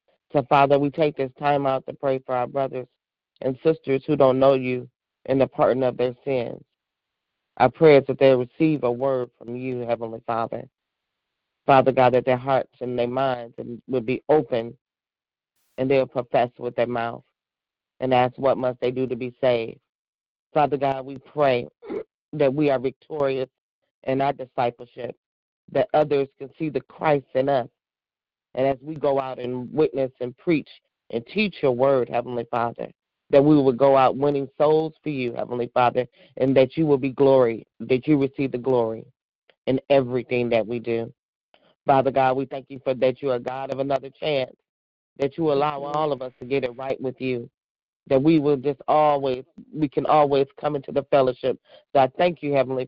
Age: 40-59